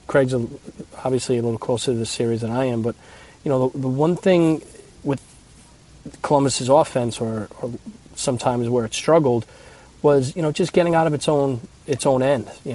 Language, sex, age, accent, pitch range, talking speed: English, male, 30-49, American, 115-135 Hz, 190 wpm